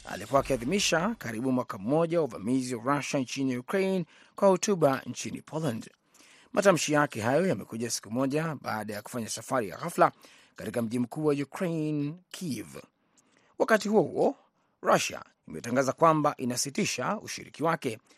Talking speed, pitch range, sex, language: 130 wpm, 125-155 Hz, male, Swahili